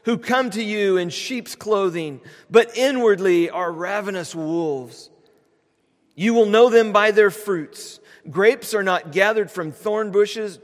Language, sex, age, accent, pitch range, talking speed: English, male, 40-59, American, 170-230 Hz, 145 wpm